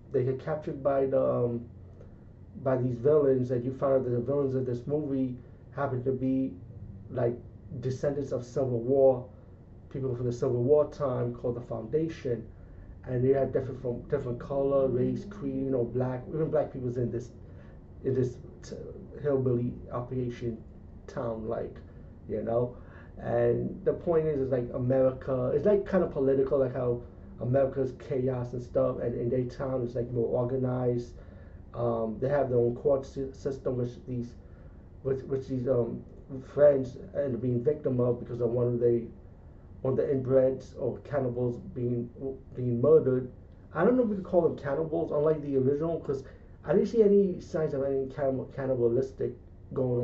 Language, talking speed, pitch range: English, 170 wpm, 115-135 Hz